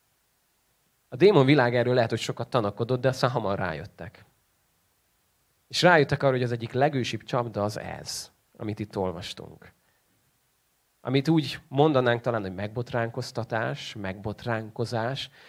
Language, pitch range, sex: Hungarian, 110-135 Hz, male